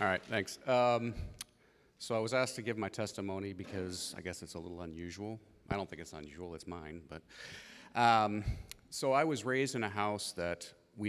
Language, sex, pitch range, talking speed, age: English, male, 85-110 Hz, 200 wpm, 40-59